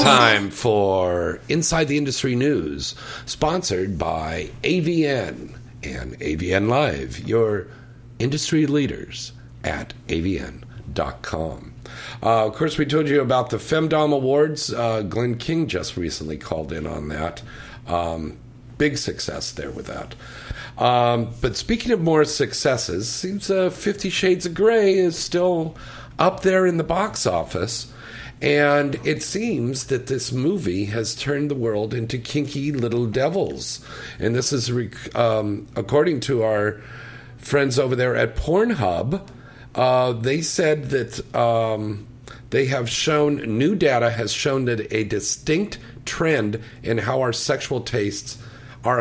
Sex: male